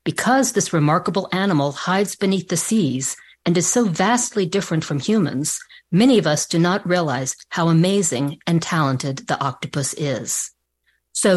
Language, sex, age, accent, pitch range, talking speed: English, female, 50-69, American, 150-210 Hz, 155 wpm